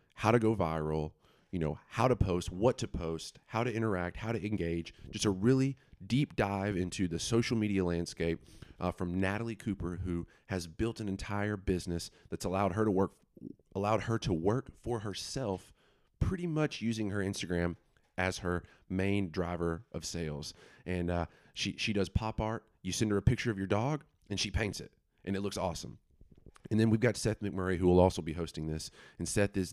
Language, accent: English, American